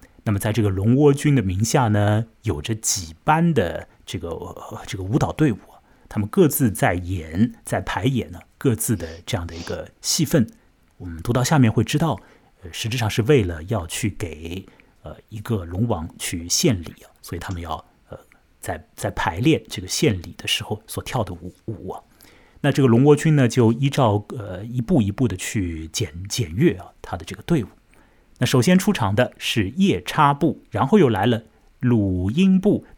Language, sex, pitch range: Chinese, male, 95-130 Hz